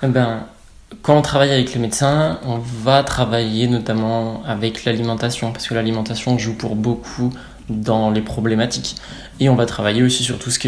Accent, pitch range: French, 110-130 Hz